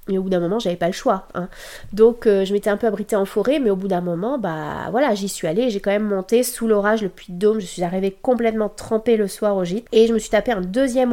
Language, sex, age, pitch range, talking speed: French, female, 30-49, 205-255 Hz, 295 wpm